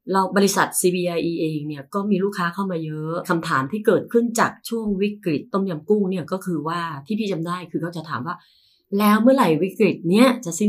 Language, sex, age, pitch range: Thai, female, 30-49, 155-210 Hz